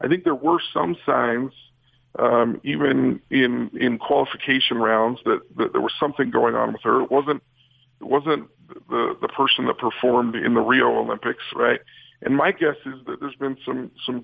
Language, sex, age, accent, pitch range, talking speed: English, male, 50-69, American, 120-135 Hz, 185 wpm